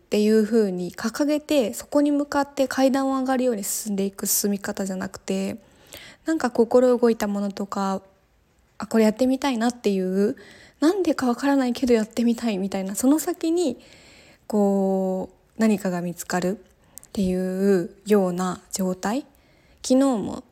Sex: female